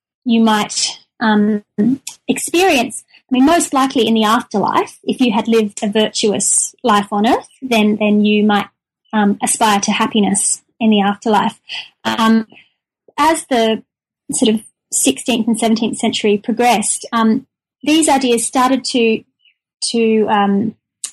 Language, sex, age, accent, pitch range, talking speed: English, female, 30-49, Australian, 215-255 Hz, 135 wpm